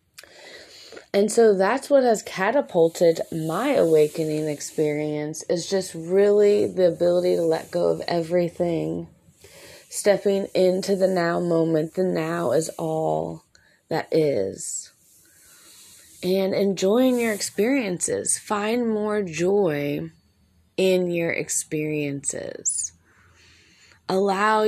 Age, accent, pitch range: 20-39, American, 155-205 Hz